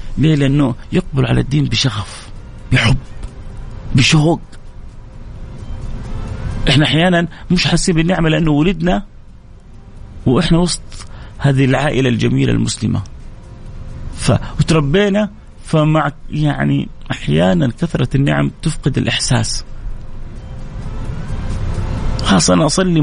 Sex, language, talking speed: male, Arabic, 85 wpm